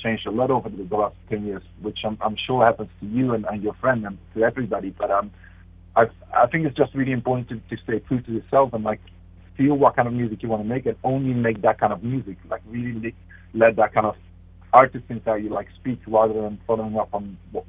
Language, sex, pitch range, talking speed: Finnish, male, 100-125 Hz, 245 wpm